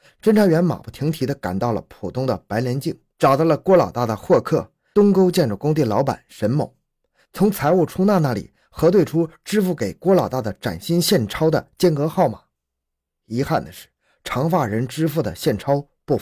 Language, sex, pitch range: Chinese, male, 110-160 Hz